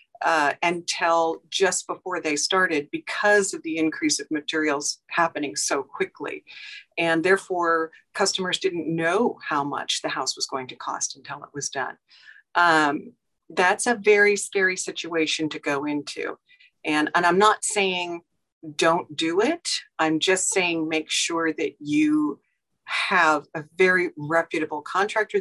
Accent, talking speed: American, 145 wpm